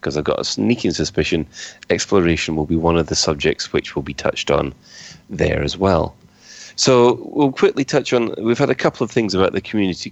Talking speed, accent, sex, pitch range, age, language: 210 wpm, British, male, 85-105 Hz, 30-49, English